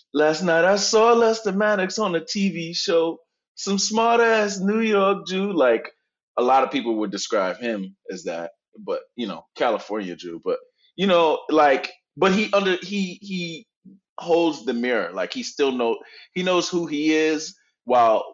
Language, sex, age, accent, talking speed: English, male, 20-39, American, 175 wpm